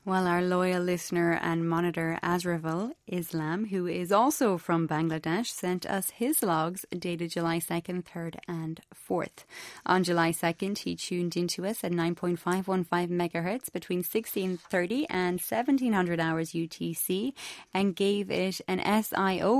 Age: 20-39